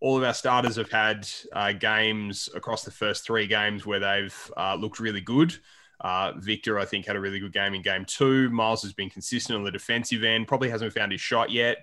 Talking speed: 230 wpm